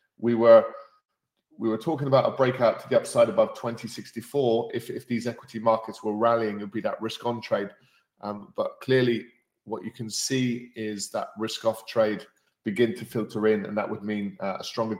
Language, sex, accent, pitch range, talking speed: English, male, British, 110-125 Hz, 200 wpm